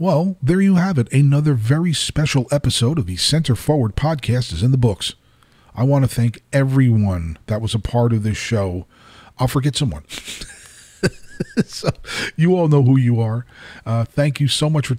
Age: 40-59